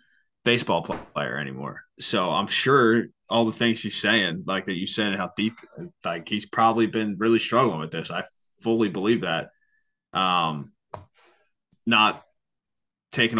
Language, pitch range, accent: English, 105-125 Hz, American